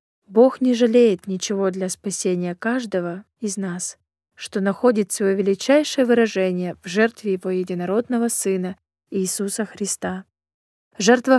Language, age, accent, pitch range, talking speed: Russian, 20-39, native, 180-235 Hz, 115 wpm